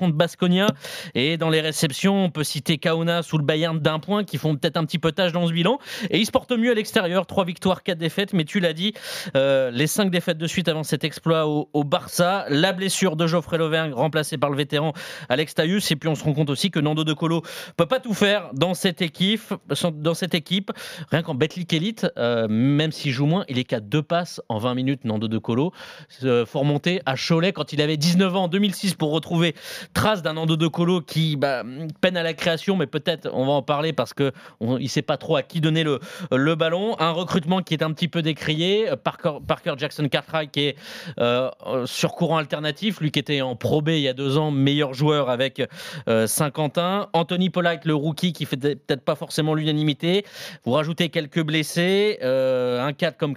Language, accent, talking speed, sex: French, French, 220 wpm, male